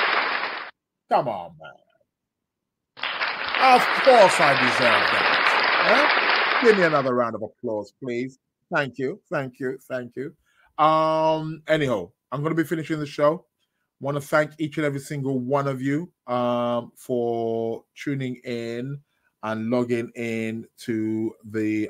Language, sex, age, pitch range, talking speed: English, male, 30-49, 115-150 Hz, 135 wpm